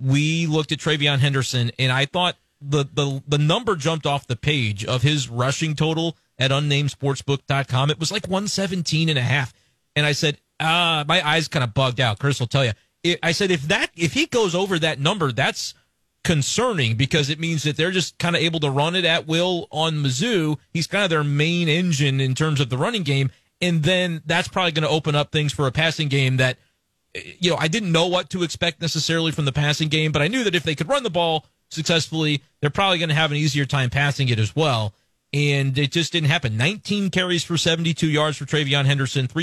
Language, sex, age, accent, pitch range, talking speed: English, male, 30-49, American, 130-165 Hz, 220 wpm